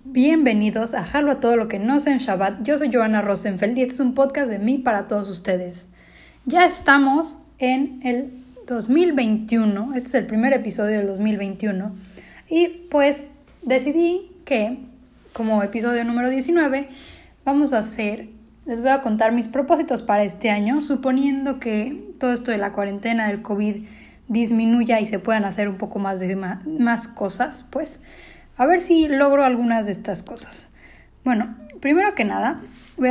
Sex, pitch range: female, 210-265 Hz